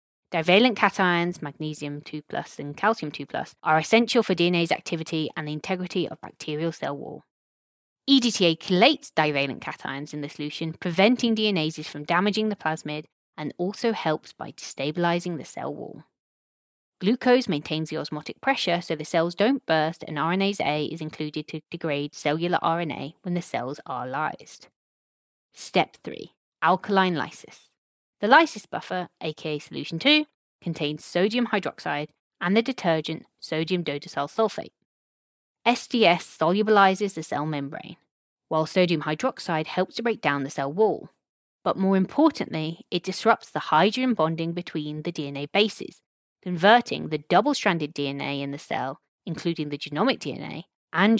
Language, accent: English, British